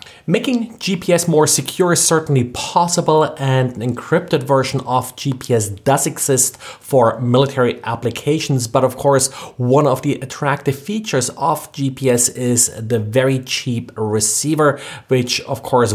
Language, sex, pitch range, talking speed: English, male, 120-150 Hz, 135 wpm